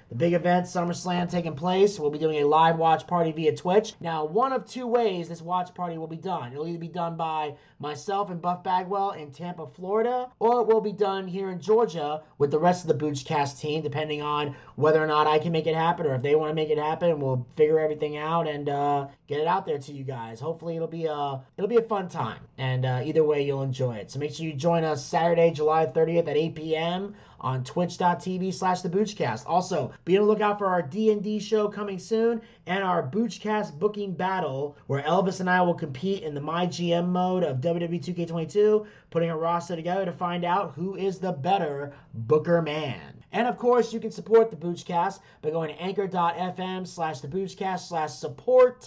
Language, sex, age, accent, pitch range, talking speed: English, male, 30-49, American, 155-190 Hz, 210 wpm